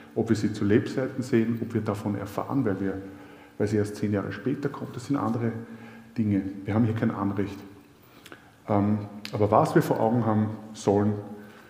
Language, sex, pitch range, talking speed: German, male, 105-125 Hz, 175 wpm